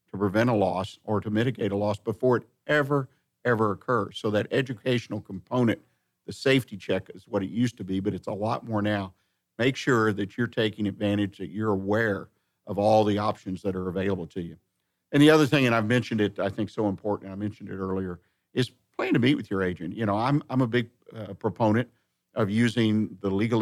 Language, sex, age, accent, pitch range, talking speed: English, male, 50-69, American, 100-115 Hz, 215 wpm